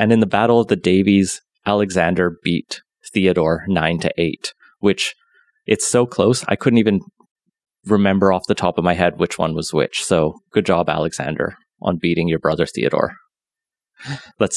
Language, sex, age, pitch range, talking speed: English, male, 30-49, 85-110 Hz, 160 wpm